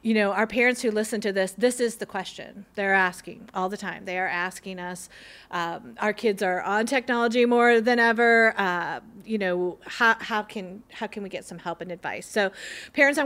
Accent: American